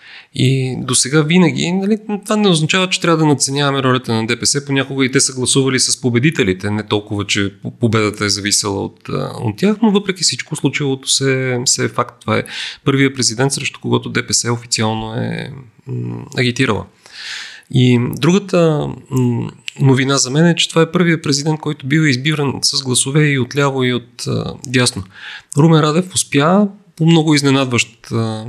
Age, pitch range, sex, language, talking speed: 30-49, 120-150 Hz, male, Bulgarian, 165 wpm